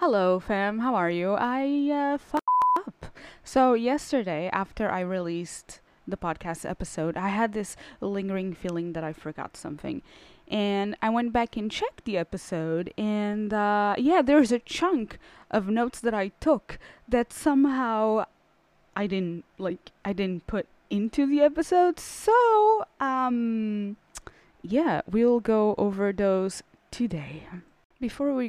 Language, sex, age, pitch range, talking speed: English, female, 20-39, 185-255 Hz, 140 wpm